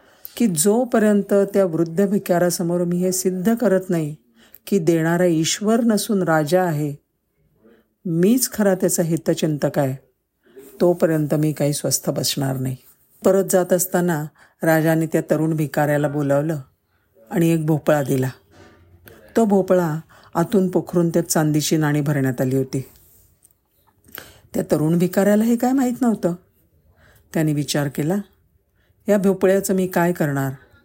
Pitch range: 140-190 Hz